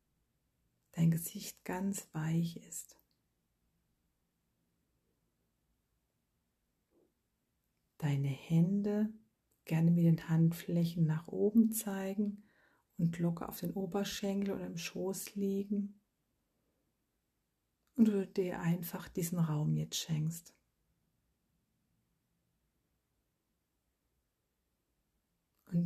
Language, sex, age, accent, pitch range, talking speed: German, female, 50-69, German, 165-195 Hz, 75 wpm